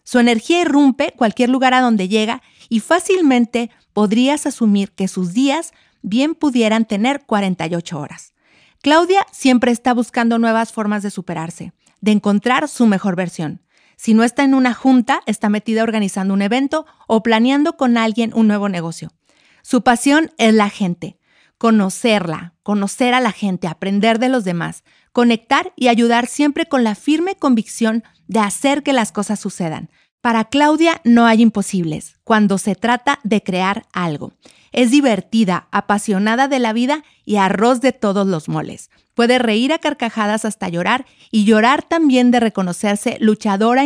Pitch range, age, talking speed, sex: 200-255 Hz, 40-59, 155 wpm, female